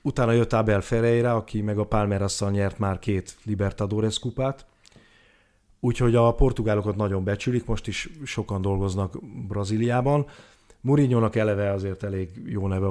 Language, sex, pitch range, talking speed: Hungarian, male, 100-120 Hz, 135 wpm